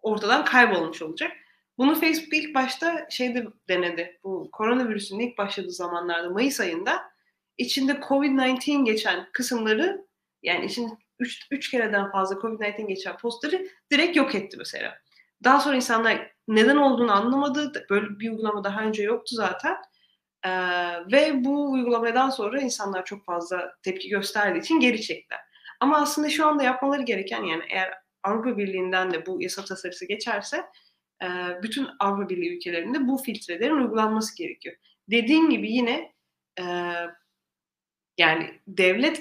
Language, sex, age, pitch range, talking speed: Turkish, female, 30-49, 190-265 Hz, 135 wpm